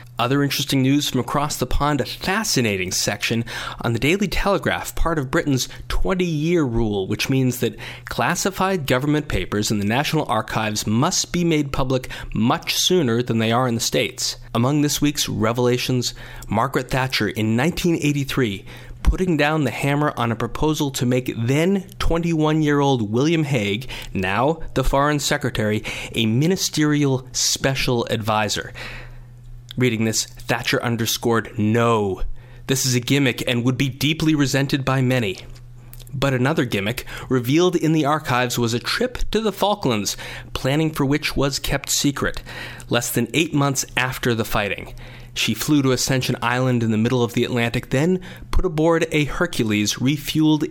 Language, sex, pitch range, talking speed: English, male, 120-145 Hz, 150 wpm